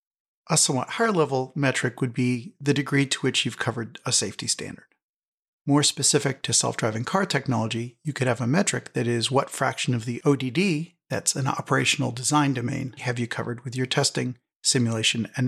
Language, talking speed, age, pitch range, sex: English, 180 wpm, 50-69, 120-140 Hz, male